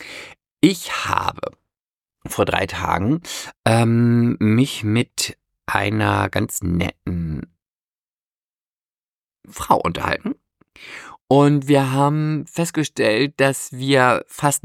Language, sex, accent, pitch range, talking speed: German, male, German, 105-135 Hz, 80 wpm